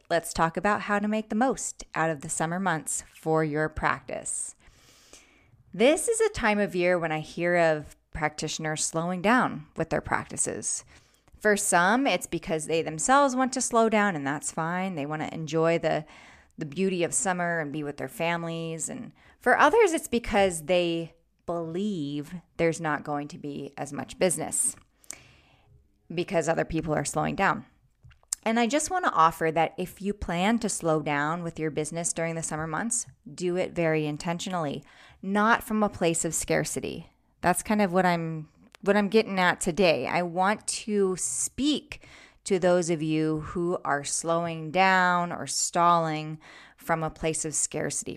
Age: 20-39